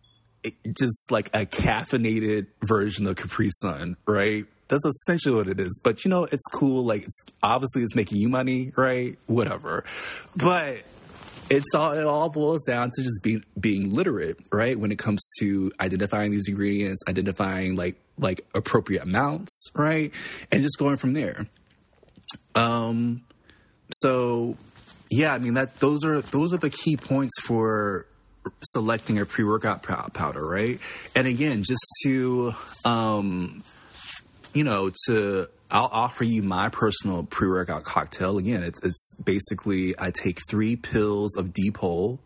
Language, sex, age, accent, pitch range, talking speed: English, male, 20-39, American, 95-125 Hz, 150 wpm